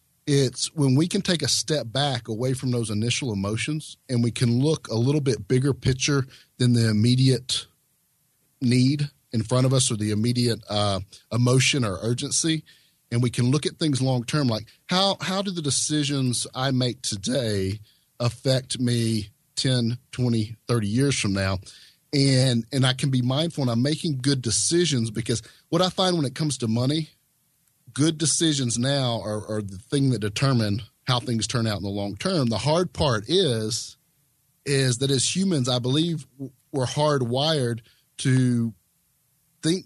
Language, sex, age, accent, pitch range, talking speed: English, male, 40-59, American, 115-145 Hz, 170 wpm